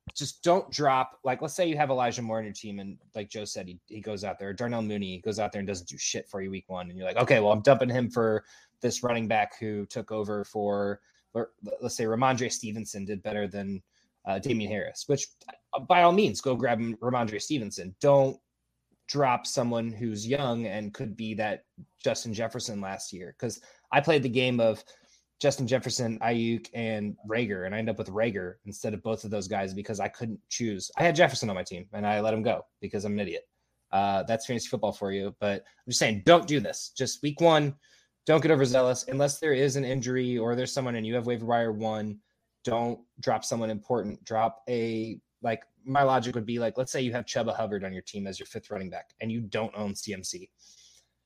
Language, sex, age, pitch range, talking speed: English, male, 20-39, 105-125 Hz, 220 wpm